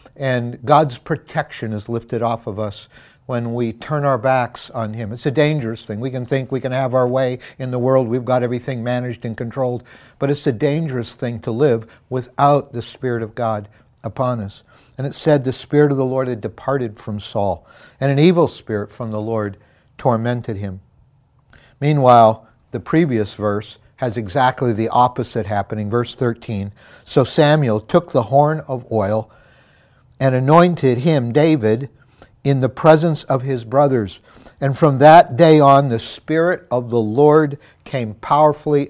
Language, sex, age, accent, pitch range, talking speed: English, male, 60-79, American, 115-135 Hz, 170 wpm